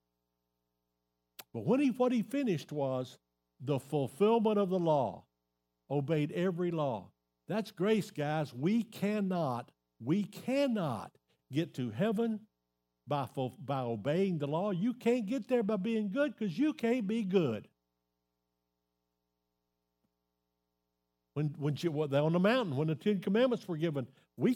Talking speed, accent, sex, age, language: 135 wpm, American, male, 60-79, English